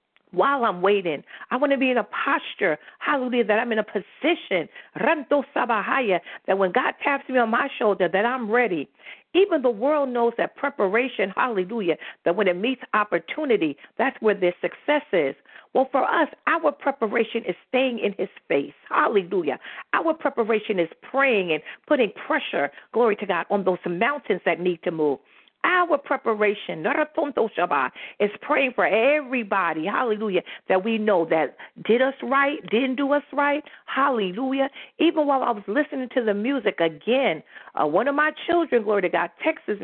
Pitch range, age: 210-300 Hz, 50-69